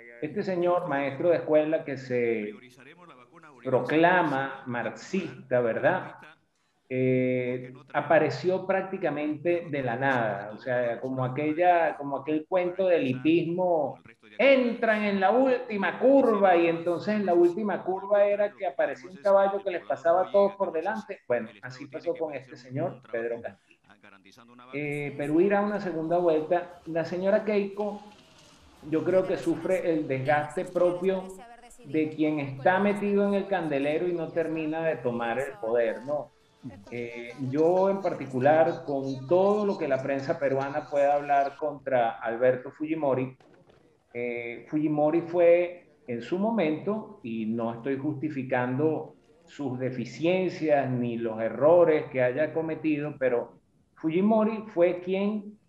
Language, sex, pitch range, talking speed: Spanish, male, 130-180 Hz, 135 wpm